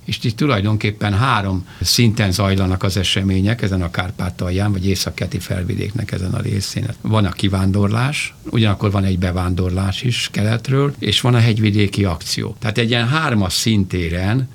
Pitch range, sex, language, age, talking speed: 100-120 Hz, male, Hungarian, 60-79, 150 wpm